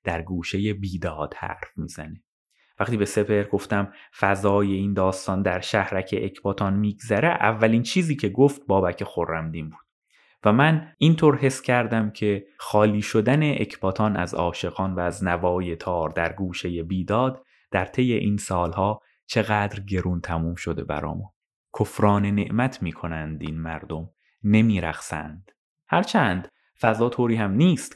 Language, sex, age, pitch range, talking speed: Persian, male, 30-49, 90-120 Hz, 130 wpm